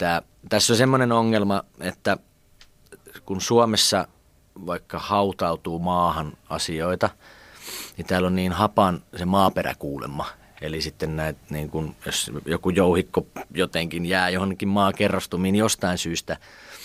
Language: Finnish